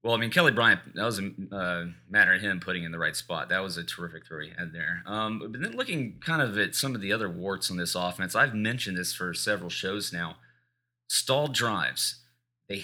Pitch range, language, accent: 95-120 Hz, English, American